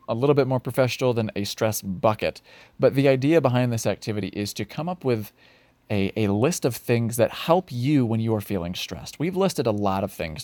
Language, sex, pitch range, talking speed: English, male, 105-135 Hz, 225 wpm